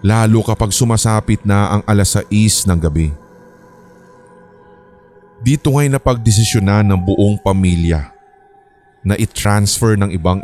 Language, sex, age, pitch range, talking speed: Filipino, male, 20-39, 90-110 Hz, 115 wpm